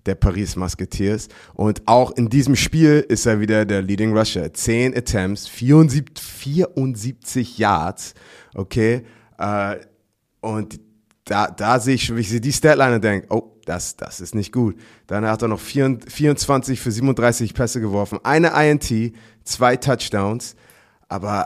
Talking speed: 135 wpm